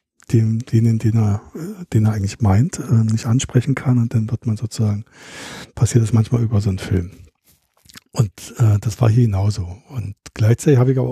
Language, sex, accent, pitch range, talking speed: German, male, German, 110-130 Hz, 180 wpm